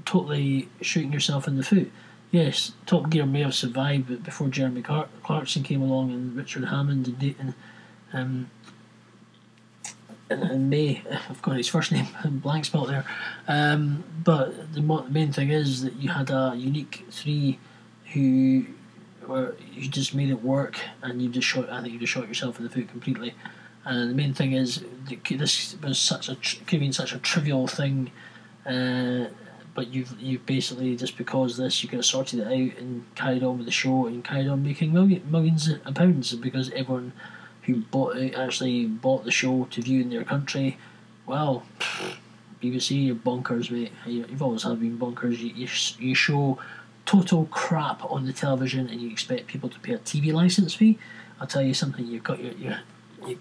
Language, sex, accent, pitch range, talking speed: English, male, British, 125-145 Hz, 180 wpm